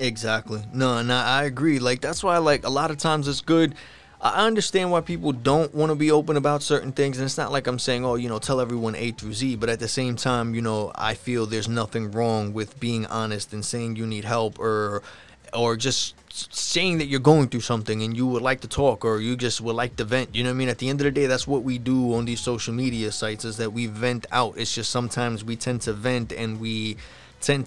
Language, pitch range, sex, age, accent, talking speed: English, 115-130 Hz, male, 20-39, American, 255 wpm